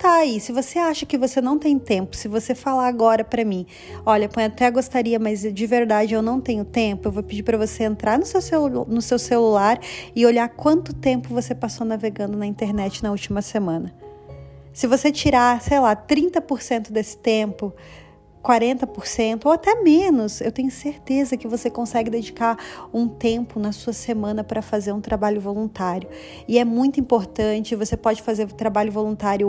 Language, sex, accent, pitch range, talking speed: Portuguese, female, Brazilian, 210-255 Hz, 180 wpm